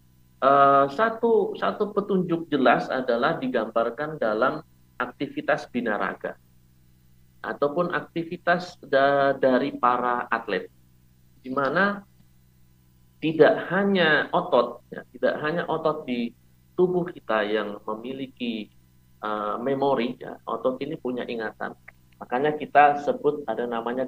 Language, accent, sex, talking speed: Indonesian, native, male, 105 wpm